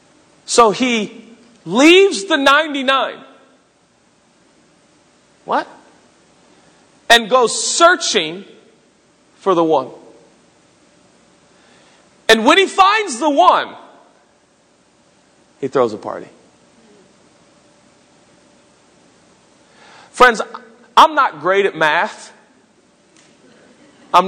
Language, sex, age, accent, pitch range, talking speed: English, male, 40-59, American, 150-230 Hz, 70 wpm